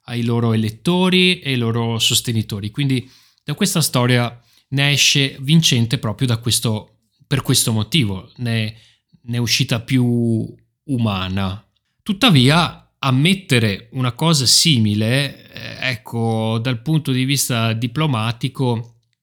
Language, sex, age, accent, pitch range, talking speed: Italian, male, 30-49, native, 110-135 Hz, 115 wpm